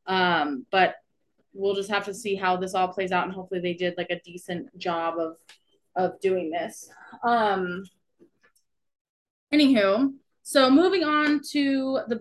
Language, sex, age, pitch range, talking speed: English, female, 20-39, 195-250 Hz, 150 wpm